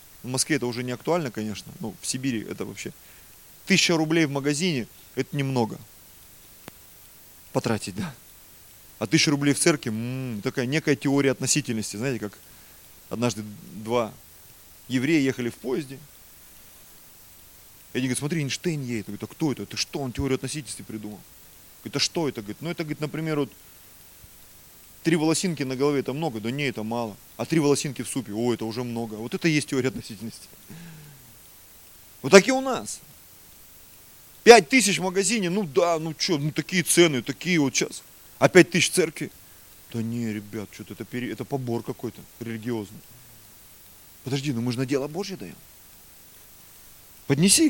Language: Russian